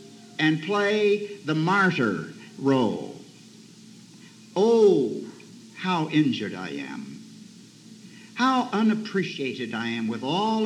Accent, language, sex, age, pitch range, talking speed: American, English, male, 60-79, 170-230 Hz, 90 wpm